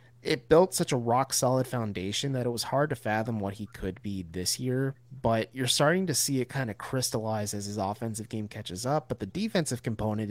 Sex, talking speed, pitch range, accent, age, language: male, 220 wpm, 115-140 Hz, American, 30-49, English